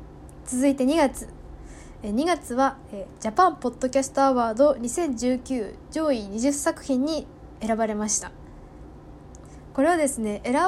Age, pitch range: 10-29, 215-290 Hz